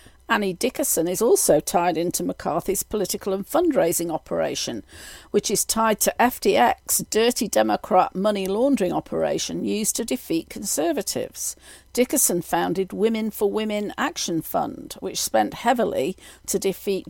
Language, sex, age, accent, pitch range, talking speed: English, female, 50-69, British, 175-220 Hz, 130 wpm